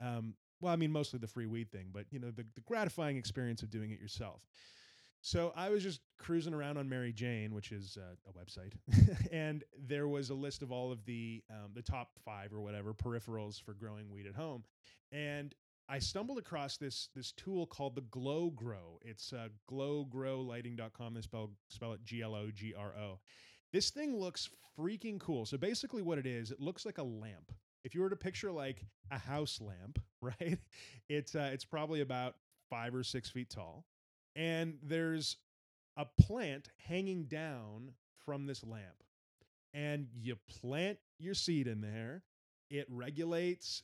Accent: American